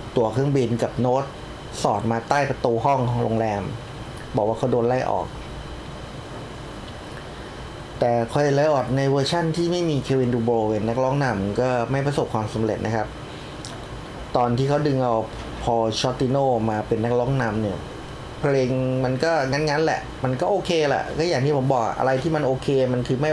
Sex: male